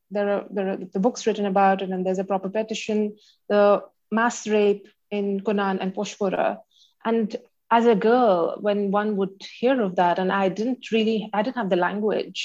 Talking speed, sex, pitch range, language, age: 195 wpm, female, 195-230 Hz, English, 30-49